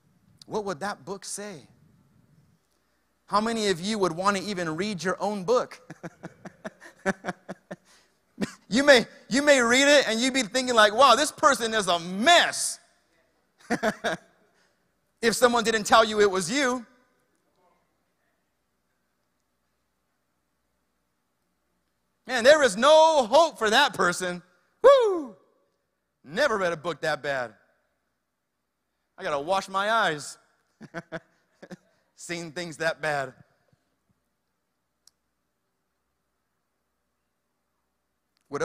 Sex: male